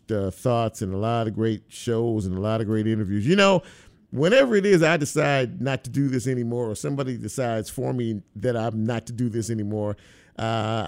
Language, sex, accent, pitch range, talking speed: English, male, American, 105-140 Hz, 215 wpm